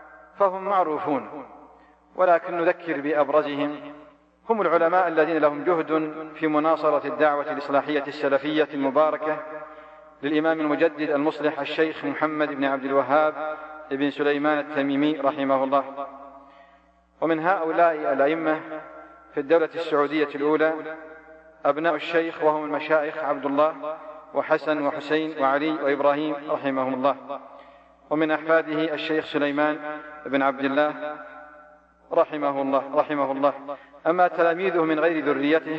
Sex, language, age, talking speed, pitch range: male, Arabic, 40-59, 105 wpm, 145-155 Hz